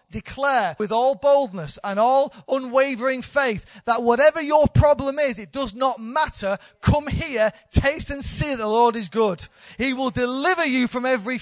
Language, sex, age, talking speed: English, male, 30-49, 170 wpm